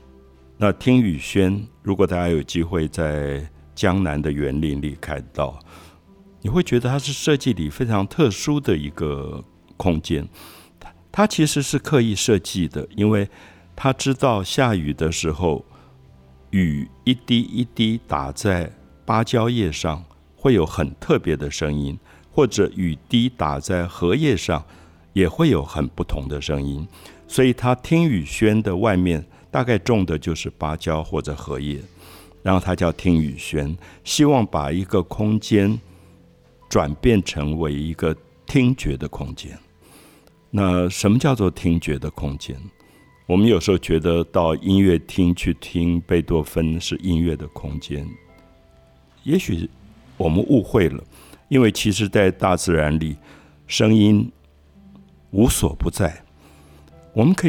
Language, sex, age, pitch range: Chinese, male, 60-79, 75-105 Hz